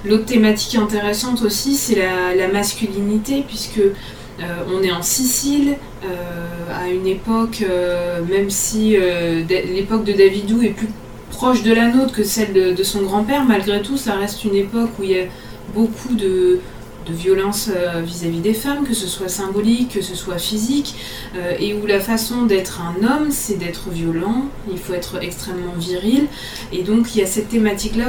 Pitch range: 190-235 Hz